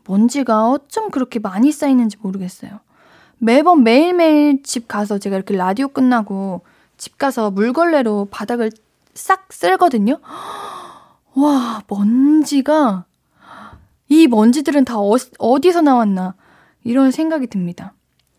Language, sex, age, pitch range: Korean, female, 10-29, 210-290 Hz